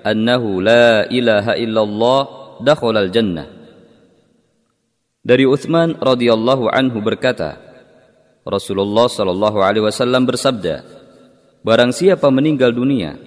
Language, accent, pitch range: Indonesian, native, 110-130 Hz